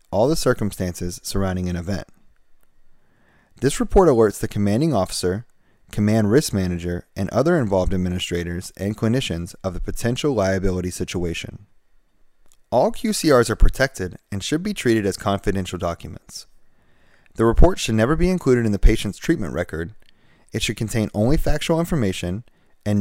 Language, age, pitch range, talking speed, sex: English, 30-49, 95-120 Hz, 145 wpm, male